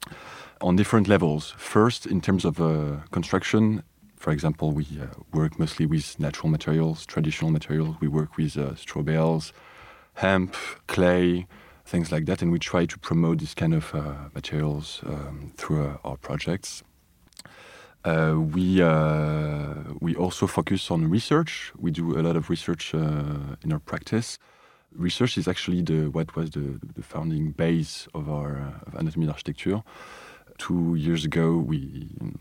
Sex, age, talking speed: male, 30-49, 155 wpm